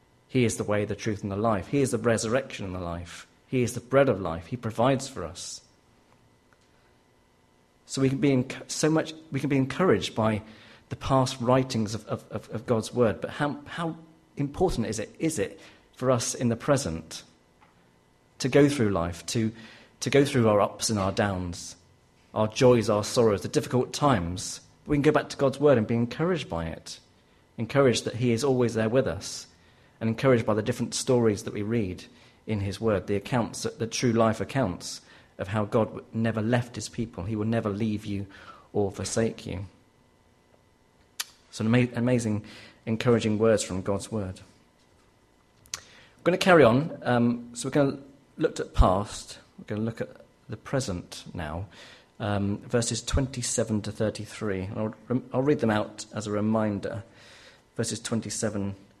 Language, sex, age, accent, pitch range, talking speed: English, male, 40-59, British, 100-125 Hz, 180 wpm